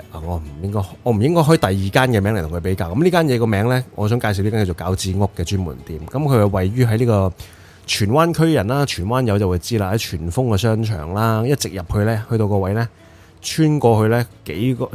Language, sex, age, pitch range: Chinese, male, 20-39, 95-120 Hz